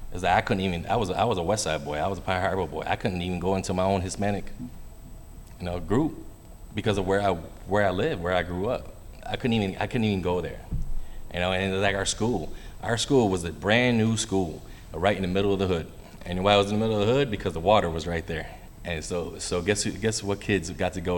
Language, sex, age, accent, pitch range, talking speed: English, male, 30-49, American, 90-110 Hz, 280 wpm